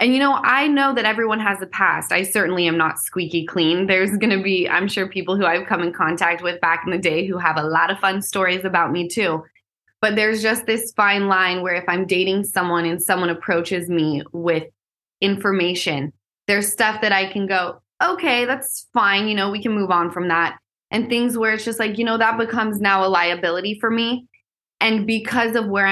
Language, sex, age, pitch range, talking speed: English, female, 20-39, 175-215 Hz, 220 wpm